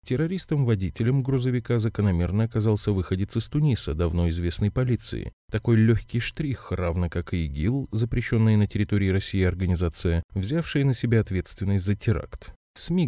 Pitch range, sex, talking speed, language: 90-120 Hz, male, 135 wpm, Russian